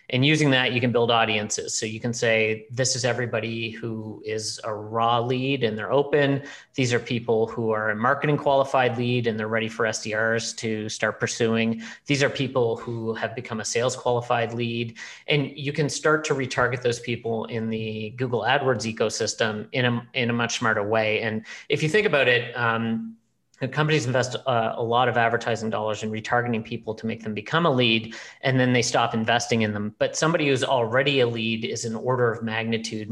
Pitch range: 110-130 Hz